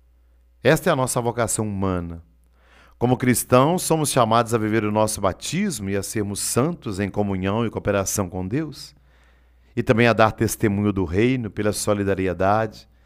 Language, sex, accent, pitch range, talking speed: Portuguese, male, Brazilian, 90-120 Hz, 155 wpm